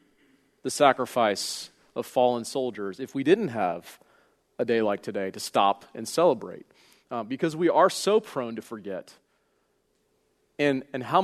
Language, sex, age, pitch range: English, male, 40-59, 125-165 Hz